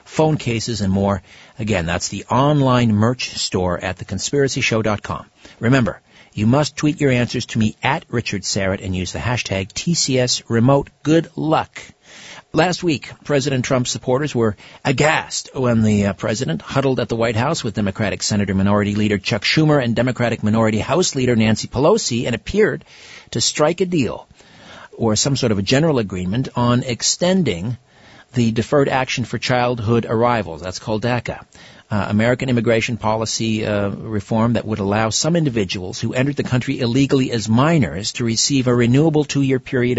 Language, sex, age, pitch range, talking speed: English, male, 50-69, 110-135 Hz, 165 wpm